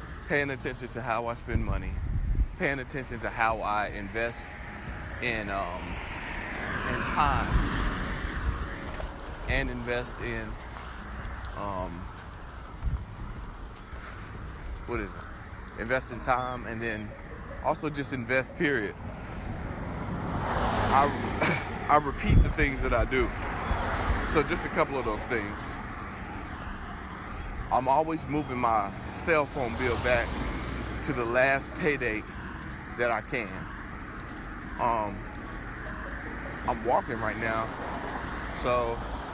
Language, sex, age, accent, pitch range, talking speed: English, male, 20-39, American, 95-120 Hz, 105 wpm